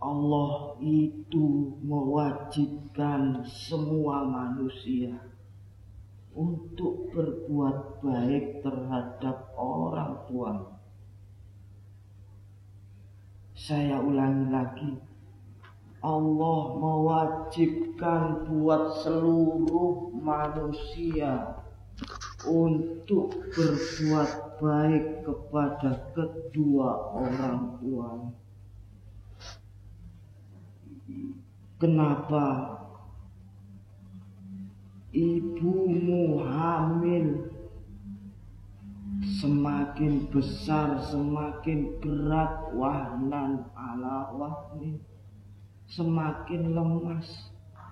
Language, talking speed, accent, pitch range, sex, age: Indonesian, 50 wpm, native, 100-155 Hz, female, 40-59